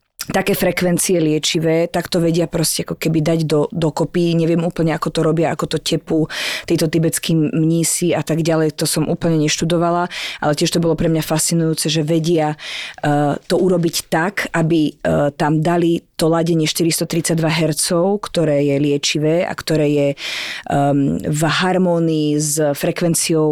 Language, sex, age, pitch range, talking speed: Slovak, female, 20-39, 155-180 Hz, 160 wpm